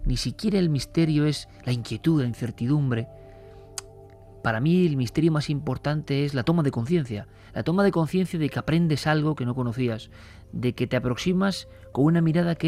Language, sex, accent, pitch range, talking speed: Spanish, male, Spanish, 110-160 Hz, 185 wpm